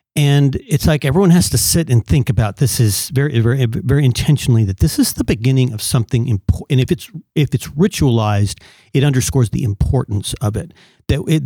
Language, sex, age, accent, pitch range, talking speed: English, male, 40-59, American, 115-140 Hz, 195 wpm